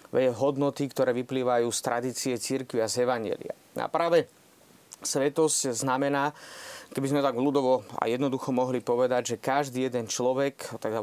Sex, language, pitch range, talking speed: male, Slovak, 130-155 Hz, 145 wpm